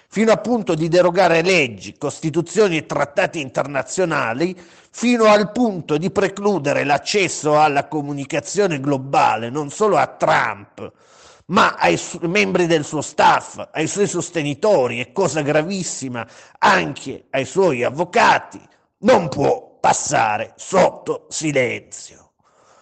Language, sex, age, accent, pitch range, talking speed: Italian, male, 30-49, native, 145-200 Hz, 115 wpm